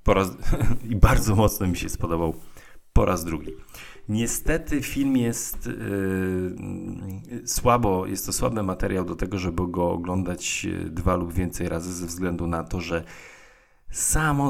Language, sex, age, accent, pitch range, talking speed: Polish, male, 40-59, native, 85-105 Hz, 145 wpm